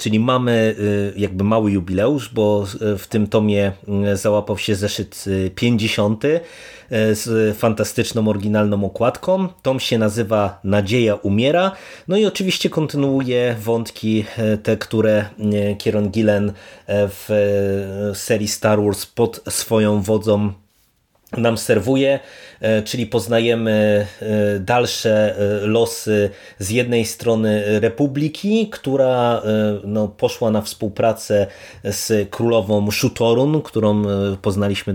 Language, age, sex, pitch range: Polish, 30-49, male, 105-120 Hz